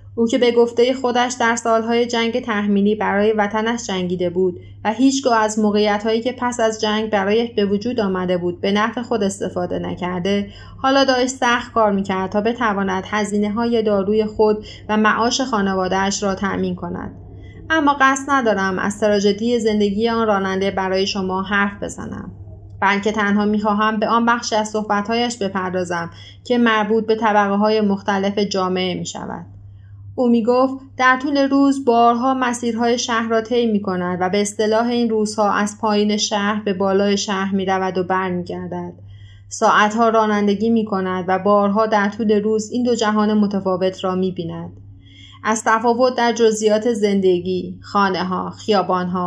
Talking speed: 150 wpm